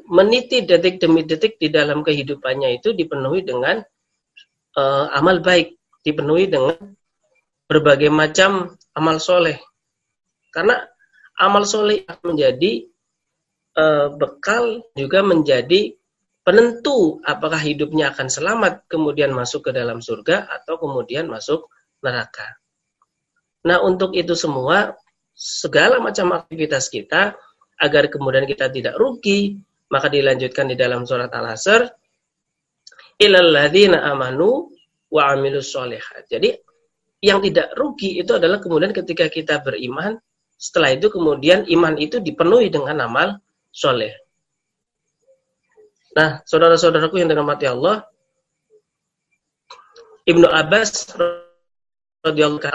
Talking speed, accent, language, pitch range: 105 wpm, native, Indonesian, 155-230 Hz